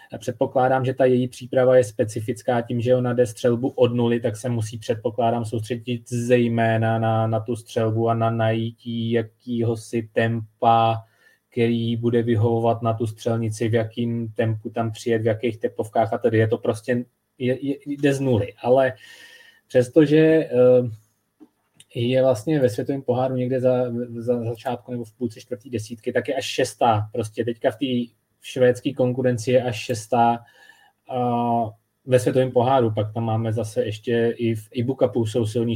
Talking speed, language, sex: 165 wpm, Czech, male